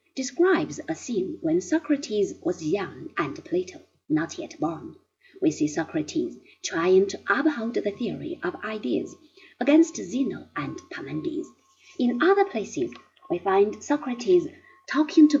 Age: 30-49